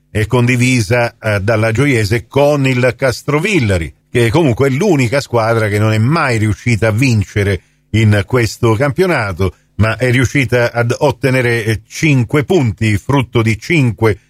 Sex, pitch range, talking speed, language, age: male, 110-130 Hz, 140 wpm, Italian, 50-69